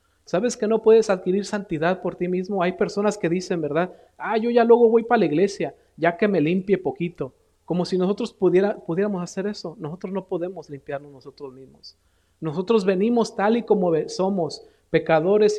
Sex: male